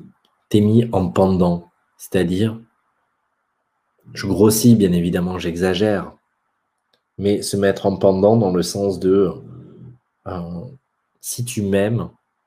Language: French